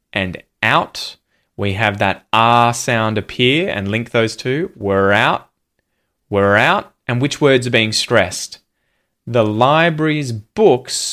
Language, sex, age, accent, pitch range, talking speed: English, male, 20-39, Australian, 105-135 Hz, 135 wpm